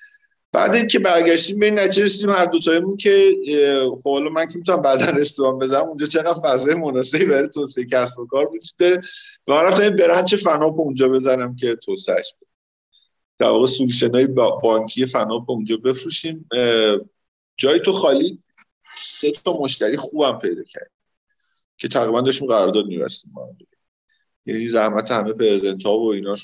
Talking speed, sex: 150 wpm, male